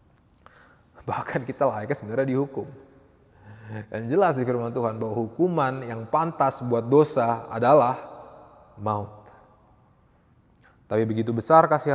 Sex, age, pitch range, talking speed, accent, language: male, 20-39, 110-135 Hz, 110 wpm, Indonesian, English